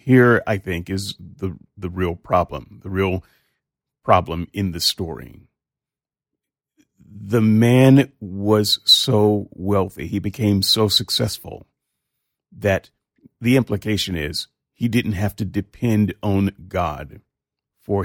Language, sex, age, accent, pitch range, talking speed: English, male, 40-59, American, 90-110 Hz, 115 wpm